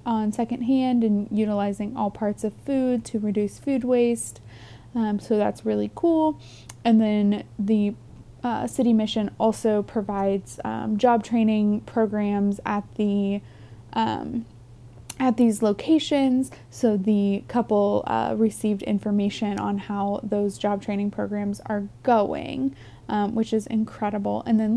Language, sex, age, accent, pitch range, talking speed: English, female, 20-39, American, 205-230 Hz, 130 wpm